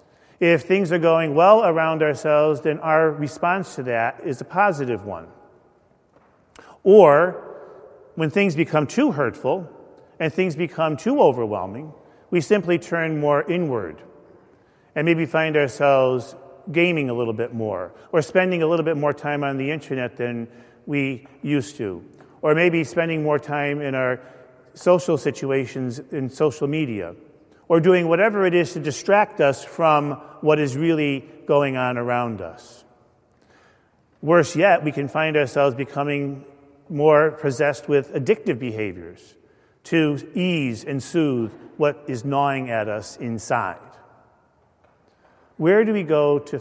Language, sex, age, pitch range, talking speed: English, male, 40-59, 125-160 Hz, 140 wpm